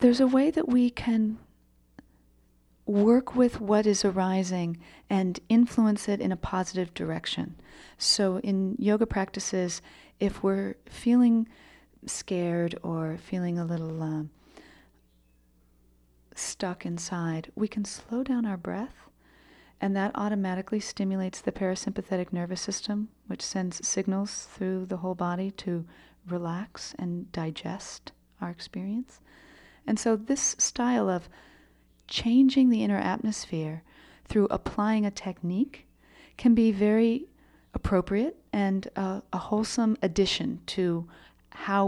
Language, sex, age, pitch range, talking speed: English, female, 40-59, 170-215 Hz, 120 wpm